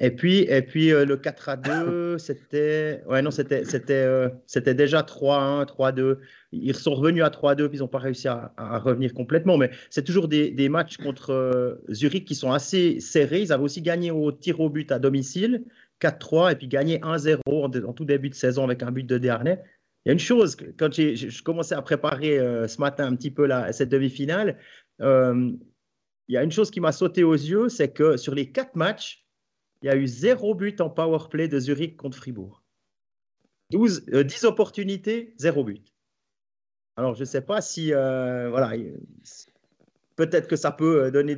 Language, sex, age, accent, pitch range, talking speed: French, male, 40-59, French, 130-160 Hz, 200 wpm